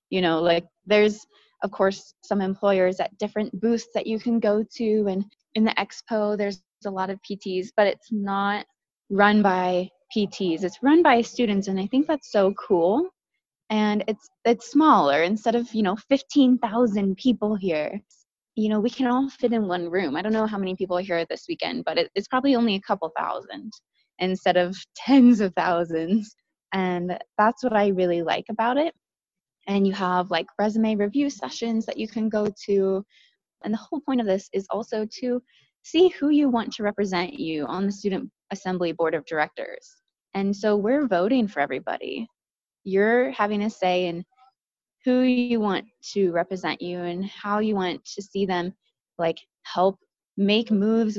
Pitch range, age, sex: 190-230 Hz, 20-39, female